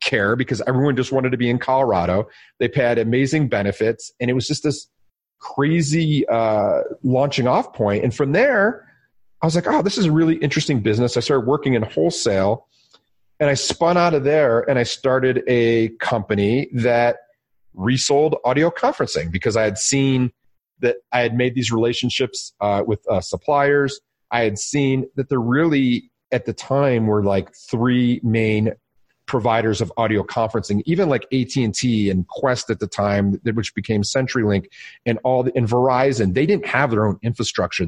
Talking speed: 175 wpm